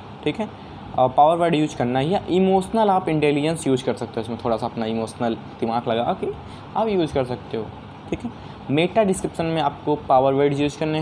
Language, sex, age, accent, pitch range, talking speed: Hindi, male, 20-39, native, 125-160 Hz, 210 wpm